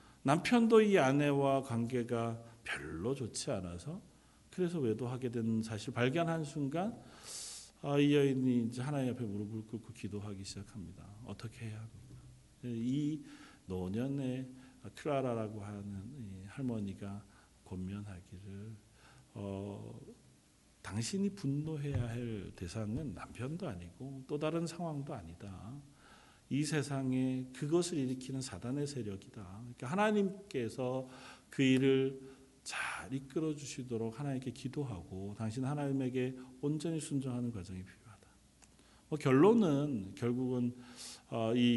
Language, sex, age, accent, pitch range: Korean, male, 40-59, native, 105-140 Hz